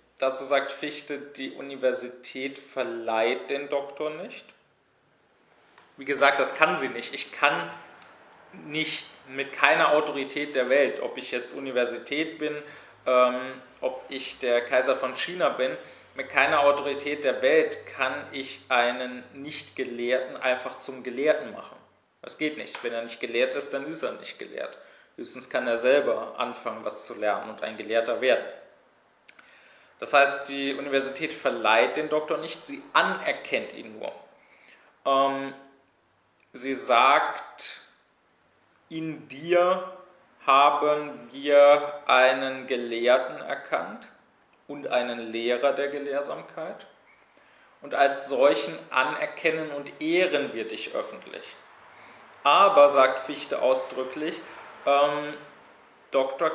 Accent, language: German, German